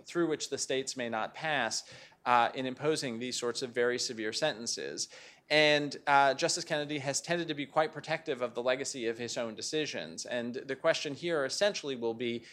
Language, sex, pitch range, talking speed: English, male, 120-155 Hz, 190 wpm